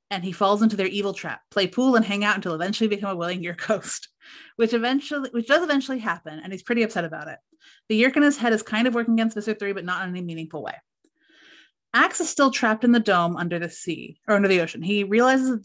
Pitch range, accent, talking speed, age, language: 185-250 Hz, American, 250 wpm, 30-49, English